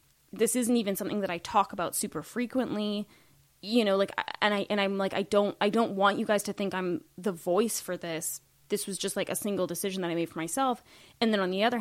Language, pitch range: English, 185-230 Hz